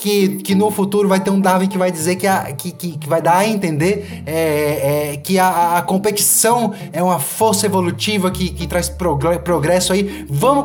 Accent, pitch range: Brazilian, 170-210 Hz